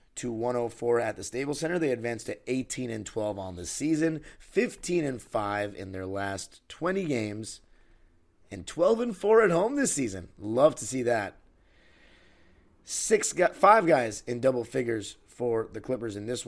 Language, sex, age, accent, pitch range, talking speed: English, male, 30-49, American, 110-145 Hz, 170 wpm